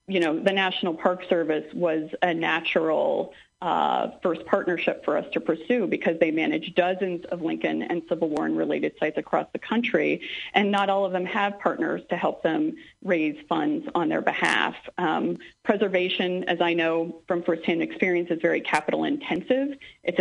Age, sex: 40-59, female